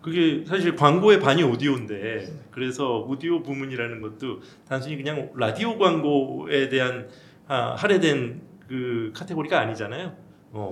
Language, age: Korean, 40-59